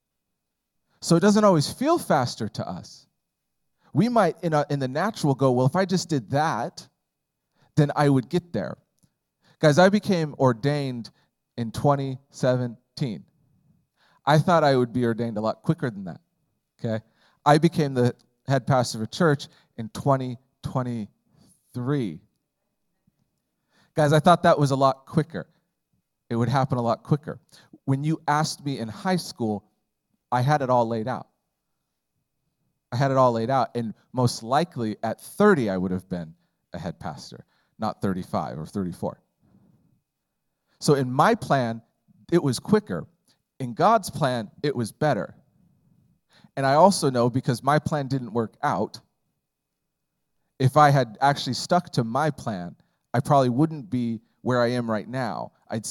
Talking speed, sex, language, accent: 155 wpm, male, English, American